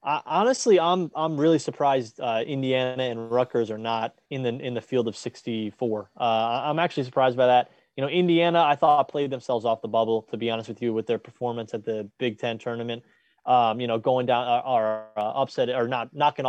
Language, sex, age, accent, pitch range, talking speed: English, male, 20-39, American, 115-135 Hz, 220 wpm